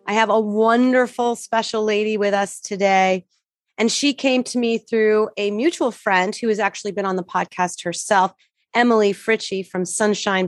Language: English